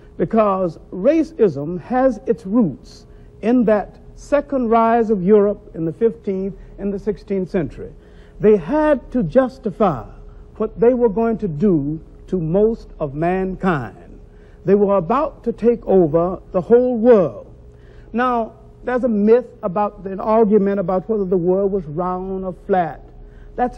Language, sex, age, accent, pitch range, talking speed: English, male, 60-79, American, 175-235 Hz, 145 wpm